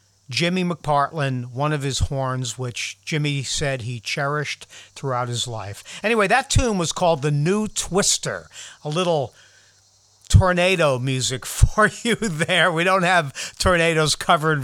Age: 50-69